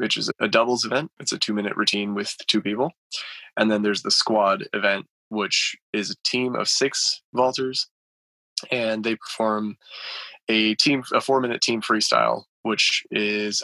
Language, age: English, 20-39